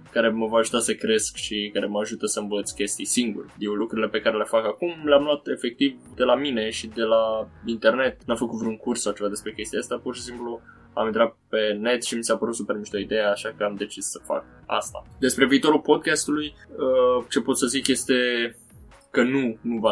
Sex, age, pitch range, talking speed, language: male, 20-39, 110-125 Hz, 225 wpm, Romanian